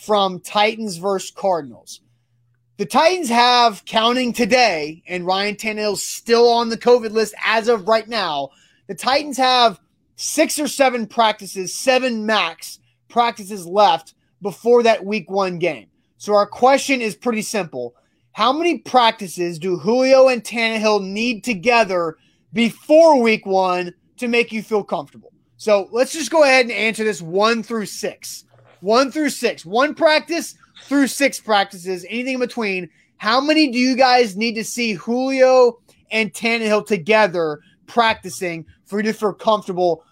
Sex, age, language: male, 30-49, English